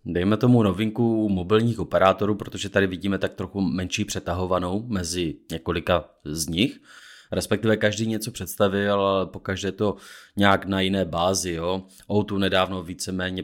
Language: Czech